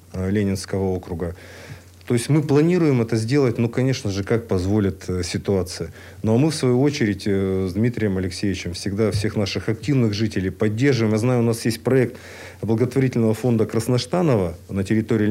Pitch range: 100-130 Hz